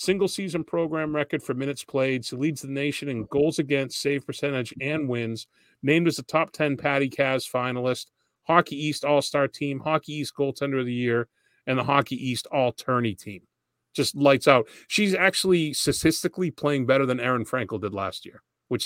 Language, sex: English, male